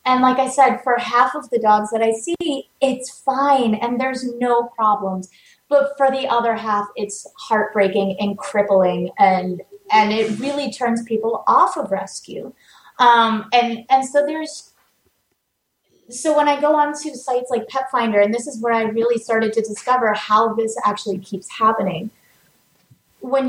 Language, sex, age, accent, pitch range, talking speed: English, female, 30-49, American, 205-260 Hz, 165 wpm